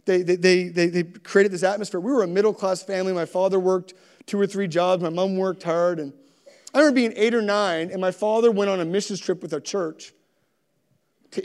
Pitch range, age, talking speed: 195-255 Hz, 40-59, 230 wpm